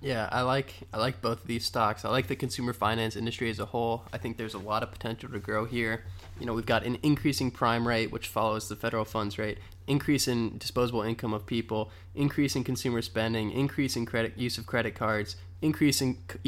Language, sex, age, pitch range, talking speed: English, male, 20-39, 105-125 Hz, 220 wpm